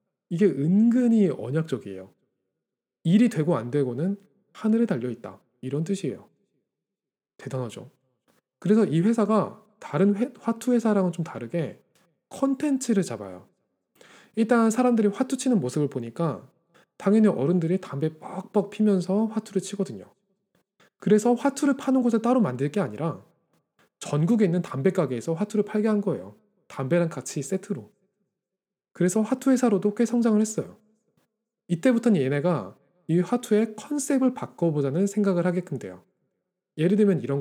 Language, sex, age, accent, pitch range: Korean, male, 20-39, native, 140-215 Hz